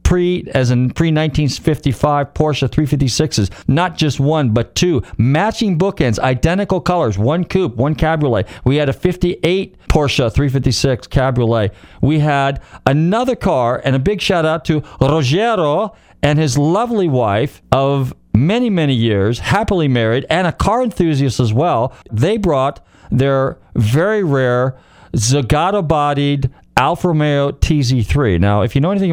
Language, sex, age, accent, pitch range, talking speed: English, male, 50-69, American, 115-160 Hz, 135 wpm